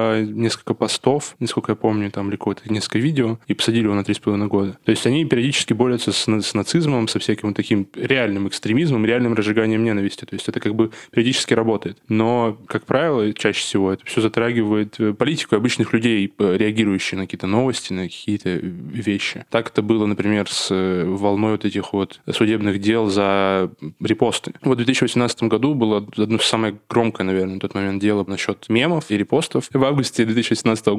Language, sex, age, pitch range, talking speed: Russian, male, 10-29, 100-115 Hz, 180 wpm